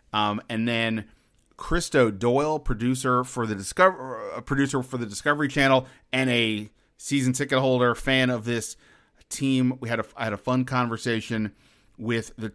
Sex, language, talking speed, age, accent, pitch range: male, English, 160 wpm, 30-49, American, 110-130 Hz